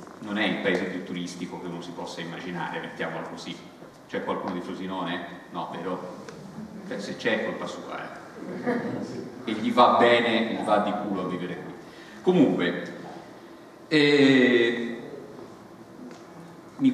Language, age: Italian, 40-59